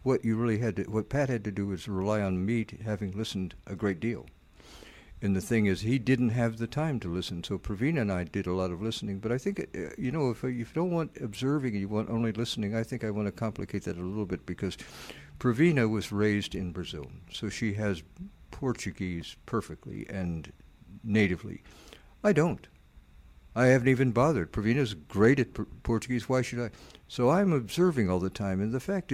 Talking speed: 205 wpm